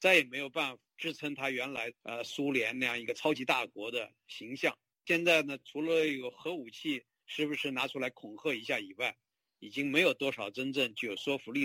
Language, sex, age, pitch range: Chinese, male, 50-69, 130-170 Hz